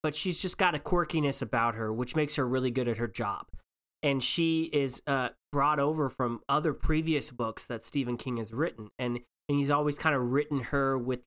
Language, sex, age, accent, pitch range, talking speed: English, male, 20-39, American, 120-155 Hz, 215 wpm